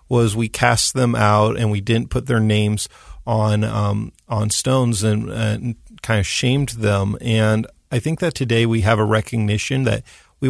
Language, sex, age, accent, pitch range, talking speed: English, male, 40-59, American, 110-120 Hz, 185 wpm